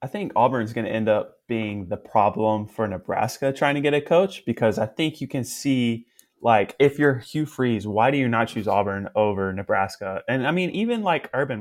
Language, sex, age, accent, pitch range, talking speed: English, male, 20-39, American, 105-130 Hz, 215 wpm